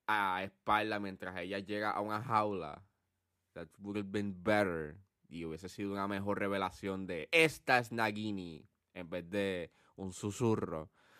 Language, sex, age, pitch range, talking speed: Spanish, male, 20-39, 100-130 Hz, 150 wpm